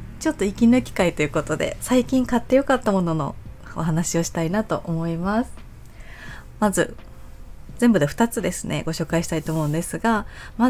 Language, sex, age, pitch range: Japanese, female, 20-39, 155-230 Hz